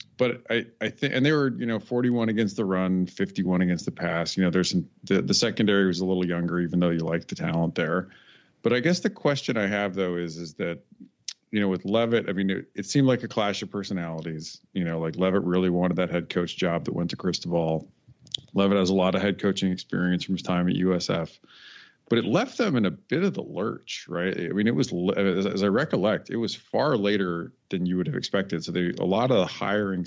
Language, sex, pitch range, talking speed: English, male, 90-110 Hz, 240 wpm